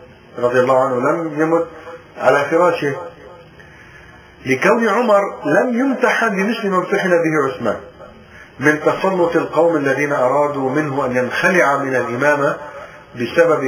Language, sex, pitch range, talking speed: English, male, 140-180 Hz, 120 wpm